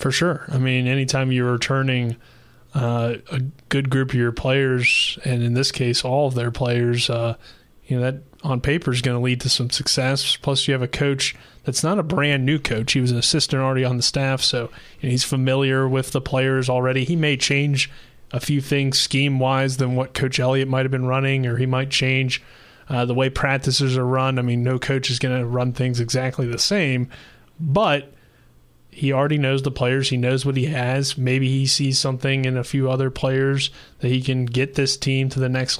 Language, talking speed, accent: English, 215 wpm, American